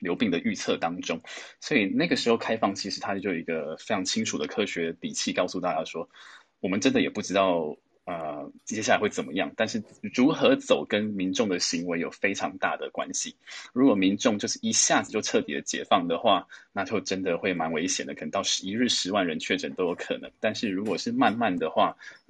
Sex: male